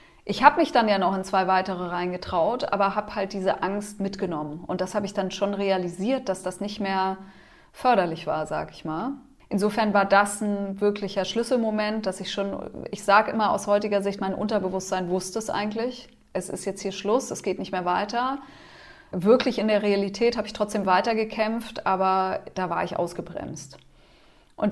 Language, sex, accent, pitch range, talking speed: German, female, German, 190-220 Hz, 185 wpm